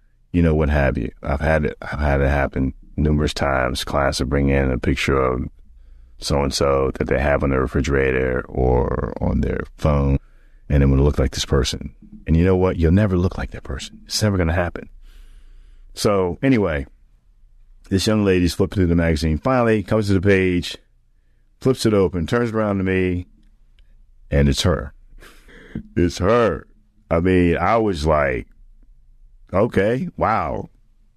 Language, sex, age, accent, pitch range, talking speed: English, male, 30-49, American, 70-95 Hz, 175 wpm